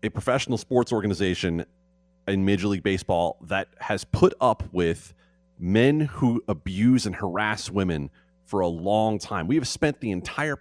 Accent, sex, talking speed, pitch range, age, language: American, male, 160 wpm, 90-130 Hz, 30-49, English